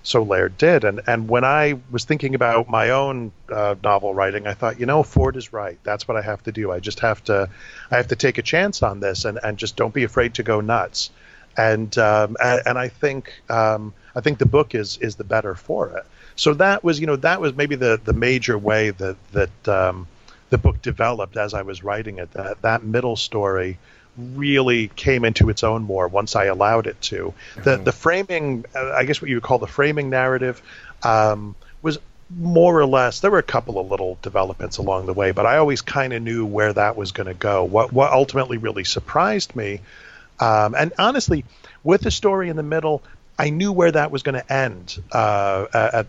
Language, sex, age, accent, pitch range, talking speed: English, male, 40-59, American, 105-135 Hz, 220 wpm